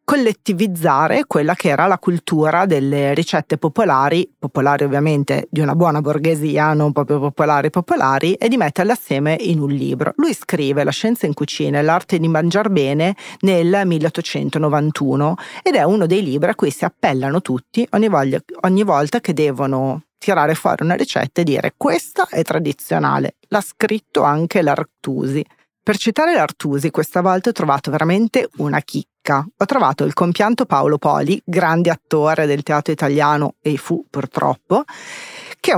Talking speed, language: 155 wpm, Italian